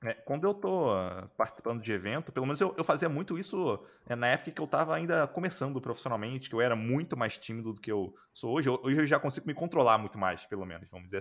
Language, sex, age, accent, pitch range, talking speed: Portuguese, male, 20-39, Brazilian, 125-175 Hz, 235 wpm